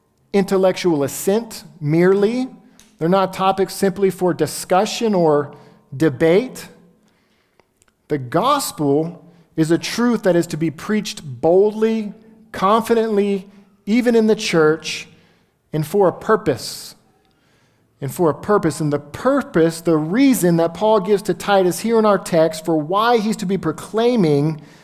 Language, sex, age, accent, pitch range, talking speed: English, male, 50-69, American, 155-200 Hz, 135 wpm